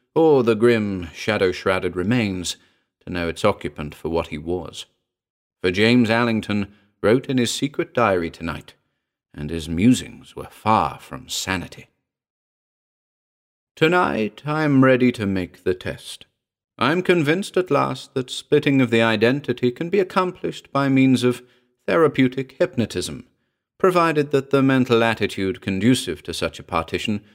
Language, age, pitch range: English, 40-59, 95-135 Hz